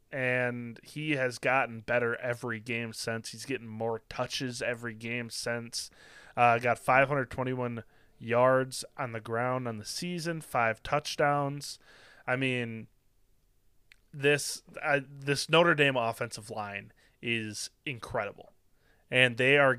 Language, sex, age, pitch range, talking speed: English, male, 20-39, 115-145 Hz, 125 wpm